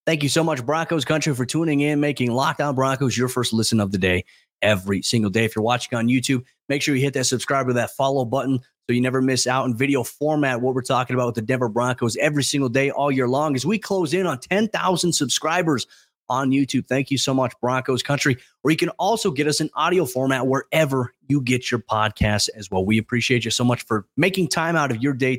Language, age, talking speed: English, 30-49, 240 wpm